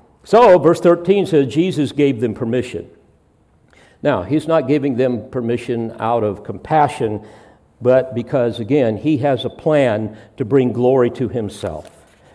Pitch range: 110-140 Hz